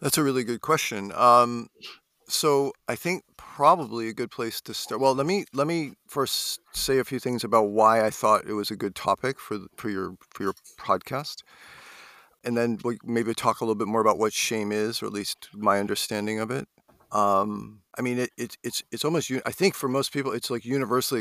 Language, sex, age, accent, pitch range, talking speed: English, male, 50-69, American, 105-130 Hz, 215 wpm